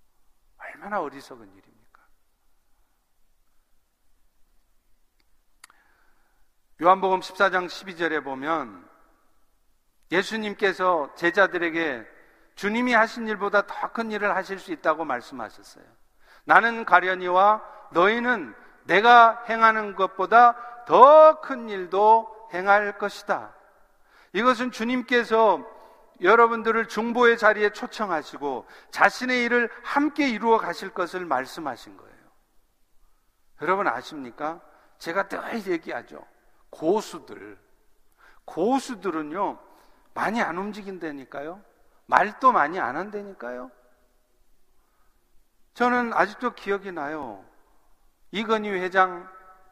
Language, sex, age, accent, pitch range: Korean, male, 50-69, native, 185-230 Hz